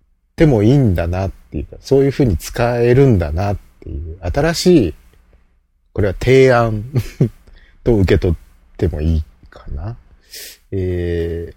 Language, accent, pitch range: Japanese, native, 85-145 Hz